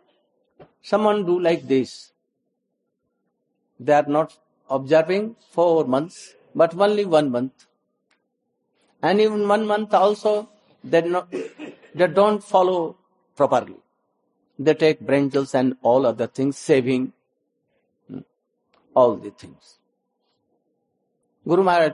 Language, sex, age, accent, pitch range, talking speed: Hindi, male, 60-79, native, 150-200 Hz, 105 wpm